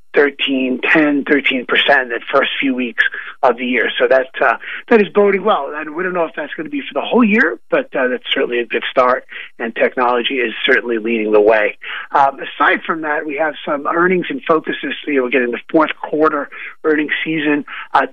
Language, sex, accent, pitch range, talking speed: English, male, American, 135-180 Hz, 200 wpm